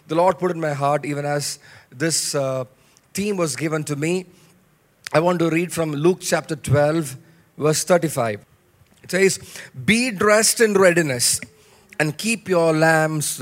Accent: Indian